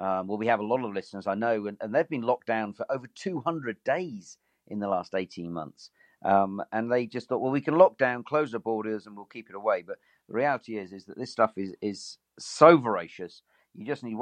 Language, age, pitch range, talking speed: English, 50-69, 100-125 Hz, 245 wpm